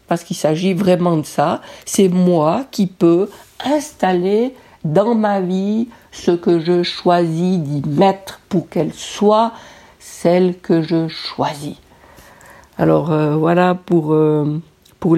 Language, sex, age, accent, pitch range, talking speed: French, female, 50-69, French, 155-195 Hz, 130 wpm